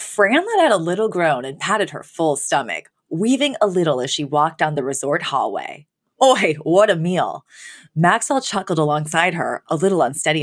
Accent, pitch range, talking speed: American, 150-200 Hz, 180 wpm